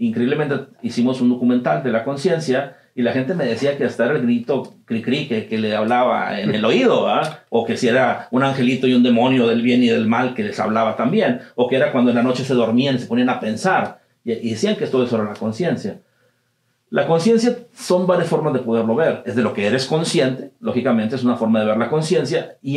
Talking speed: 235 wpm